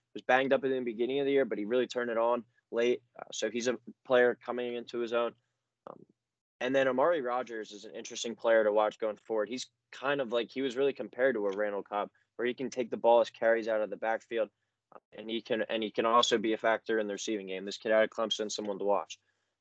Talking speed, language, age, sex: 260 wpm, English, 20-39, male